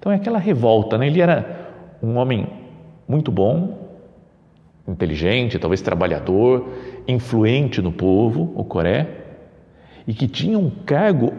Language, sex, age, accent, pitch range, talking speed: Portuguese, male, 50-69, Brazilian, 100-160 Hz, 125 wpm